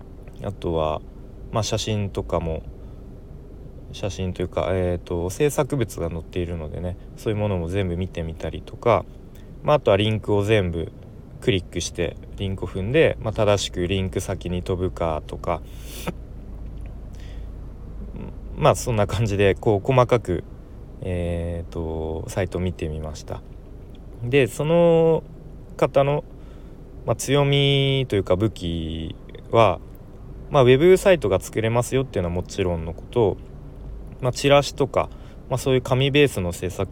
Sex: male